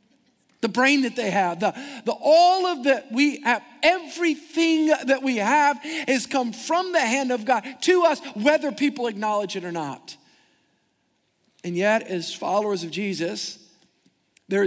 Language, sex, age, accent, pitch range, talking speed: English, male, 50-69, American, 190-255 Hz, 155 wpm